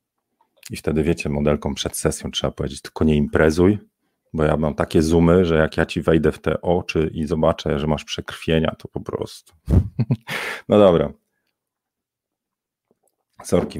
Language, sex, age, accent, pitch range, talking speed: Polish, male, 40-59, native, 80-100 Hz, 150 wpm